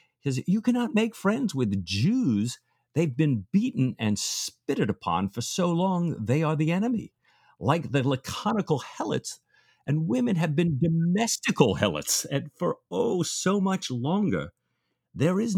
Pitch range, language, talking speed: 130-215 Hz, English, 145 wpm